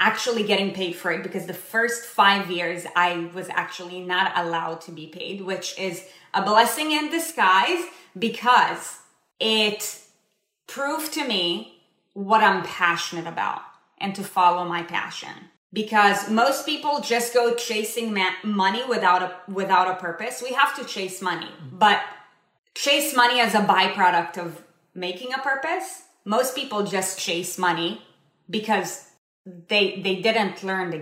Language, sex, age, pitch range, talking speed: English, female, 20-39, 180-225 Hz, 145 wpm